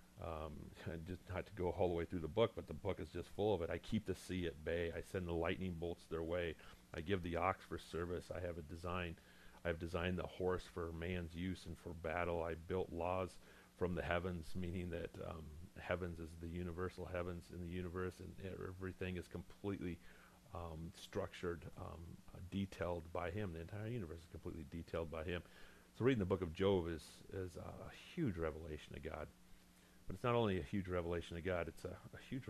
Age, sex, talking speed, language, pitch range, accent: 40-59, male, 210 wpm, English, 80-90 Hz, American